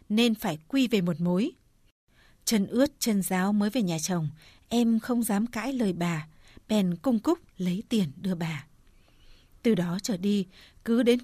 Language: Vietnamese